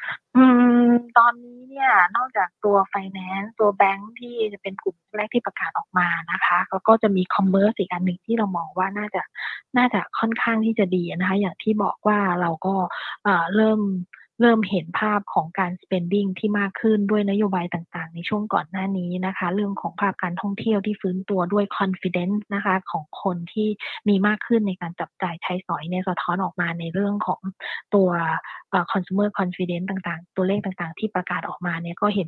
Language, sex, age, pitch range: Thai, female, 20-39, 180-210 Hz